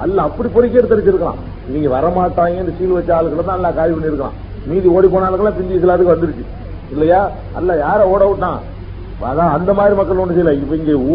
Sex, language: male, Tamil